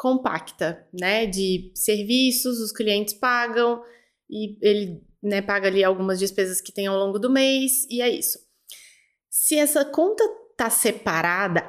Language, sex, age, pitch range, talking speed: Portuguese, female, 20-39, 215-275 Hz, 145 wpm